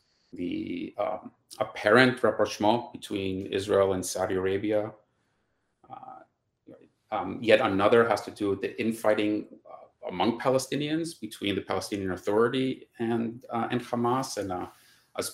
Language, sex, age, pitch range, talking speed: English, male, 30-49, 105-125 Hz, 130 wpm